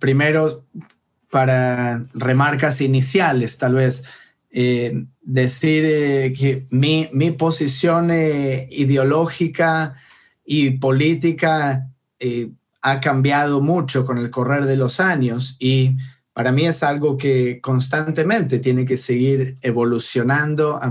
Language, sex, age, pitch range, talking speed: English, male, 30-49, 125-150 Hz, 110 wpm